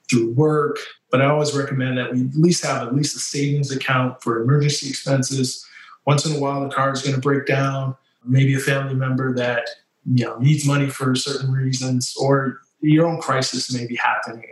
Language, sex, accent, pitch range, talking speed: English, male, American, 125-140 Hz, 205 wpm